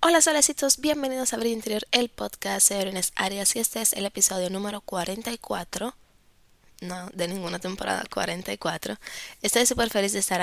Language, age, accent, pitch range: Spanish, 20-39, American, 175-215 Hz